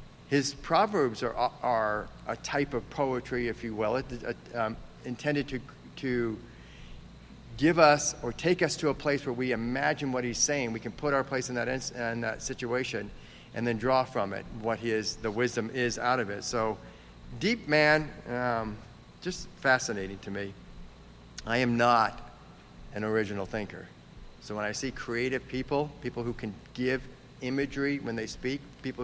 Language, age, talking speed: English, 50-69, 175 wpm